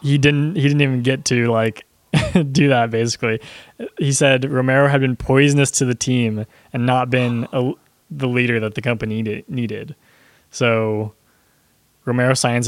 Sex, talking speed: male, 160 wpm